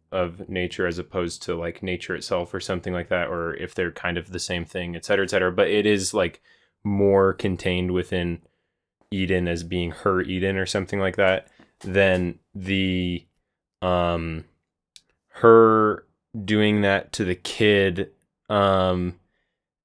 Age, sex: 20-39, male